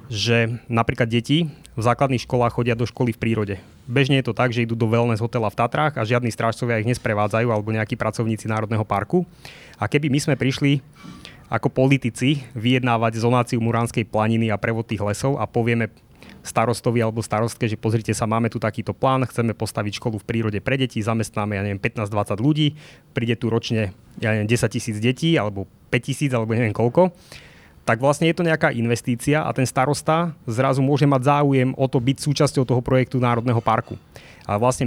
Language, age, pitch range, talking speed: Slovak, 20-39, 115-140 Hz, 185 wpm